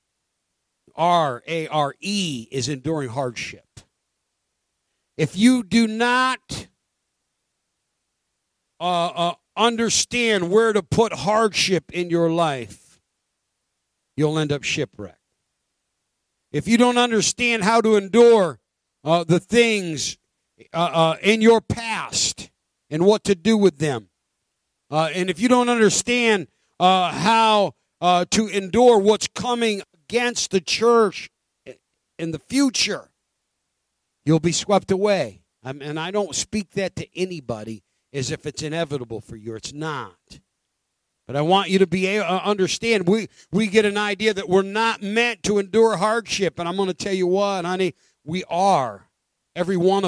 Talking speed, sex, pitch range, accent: 135 wpm, male, 160-225 Hz, American